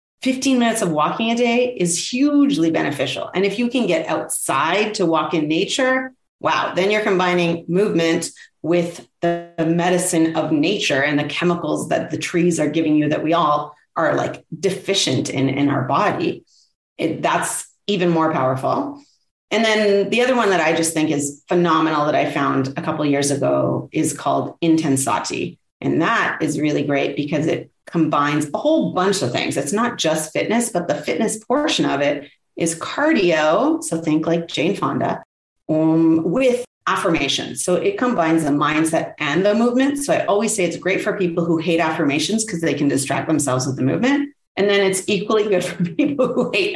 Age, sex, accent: 30-49, female, American